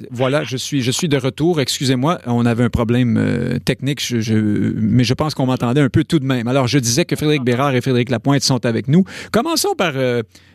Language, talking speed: French, 235 wpm